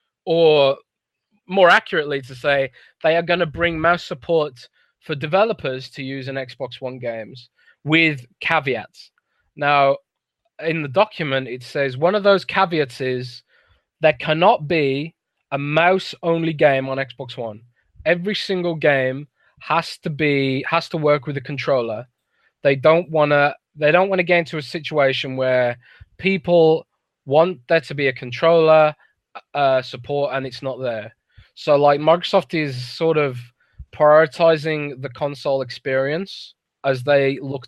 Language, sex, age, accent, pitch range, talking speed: English, male, 20-39, British, 135-165 Hz, 145 wpm